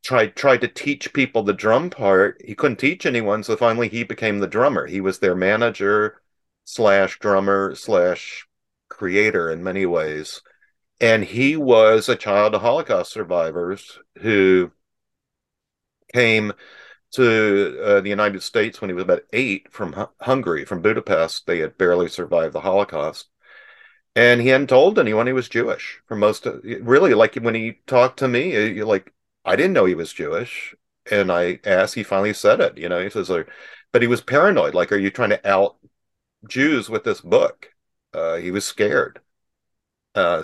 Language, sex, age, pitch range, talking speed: English, male, 50-69, 95-125 Hz, 170 wpm